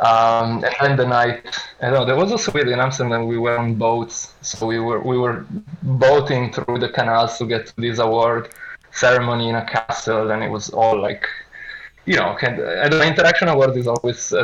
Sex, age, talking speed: male, 20-39, 205 wpm